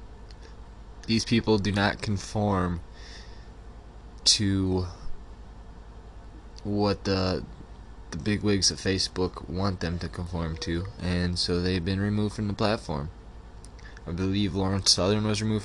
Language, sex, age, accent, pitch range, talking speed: English, male, 20-39, American, 85-105 Hz, 125 wpm